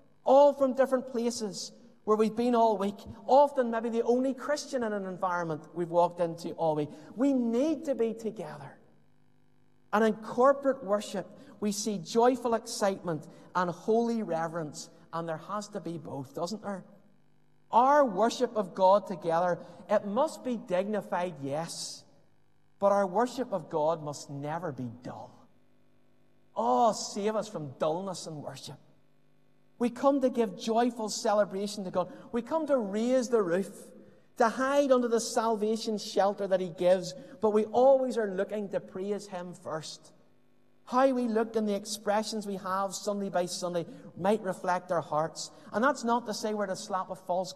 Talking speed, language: 165 wpm, English